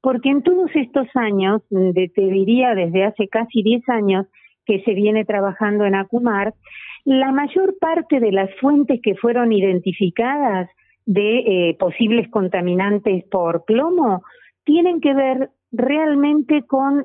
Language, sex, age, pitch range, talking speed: Spanish, female, 40-59, 210-265 Hz, 135 wpm